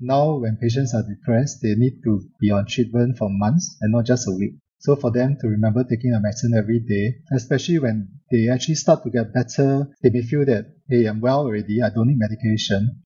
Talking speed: 220 wpm